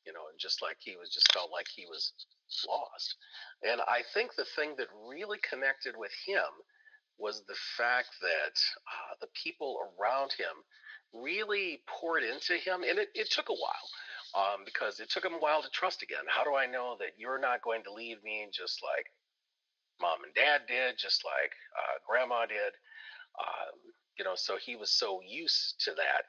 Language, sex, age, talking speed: English, male, 40-59, 190 wpm